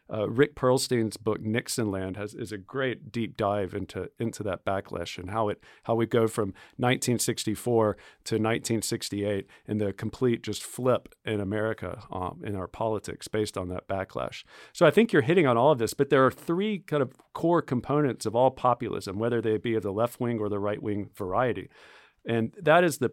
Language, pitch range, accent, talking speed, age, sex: English, 105-125 Hz, American, 195 wpm, 40-59, male